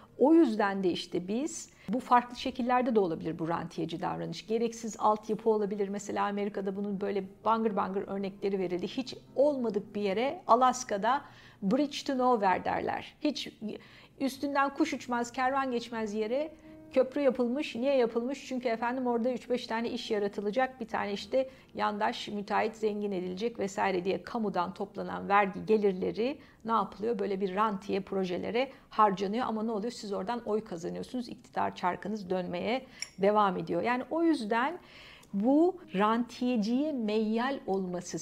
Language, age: Turkish, 50-69